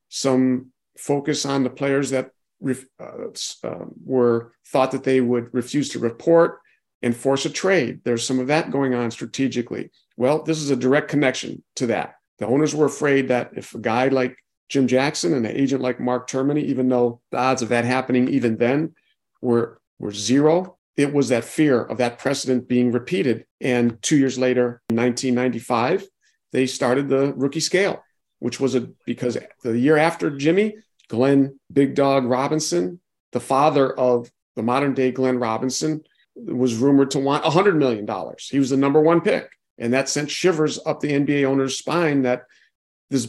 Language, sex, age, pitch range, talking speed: English, male, 50-69, 125-140 Hz, 175 wpm